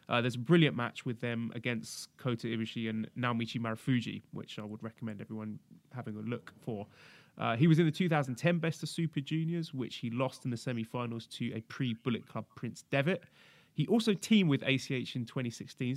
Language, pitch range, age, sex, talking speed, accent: English, 115-140 Hz, 20-39, male, 190 wpm, British